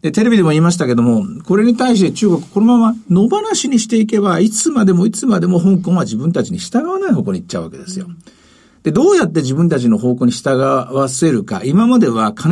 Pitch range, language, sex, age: 165-215 Hz, Japanese, male, 50-69